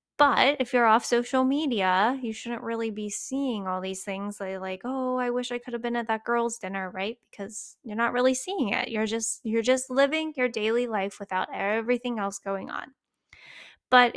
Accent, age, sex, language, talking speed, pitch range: American, 10-29, female, English, 205 wpm, 210-250 Hz